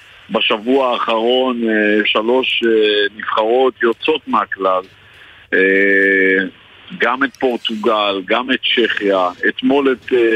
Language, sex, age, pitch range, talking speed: Hebrew, male, 50-69, 110-145 Hz, 80 wpm